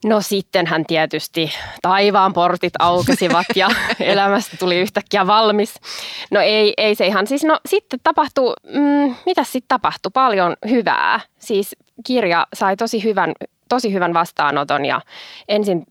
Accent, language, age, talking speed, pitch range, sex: native, Finnish, 20-39, 125 wpm, 165-215 Hz, female